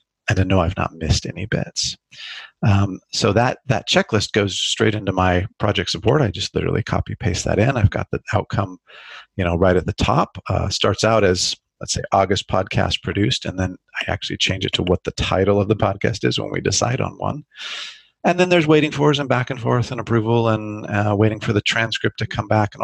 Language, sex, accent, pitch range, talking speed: English, male, American, 95-115 Hz, 225 wpm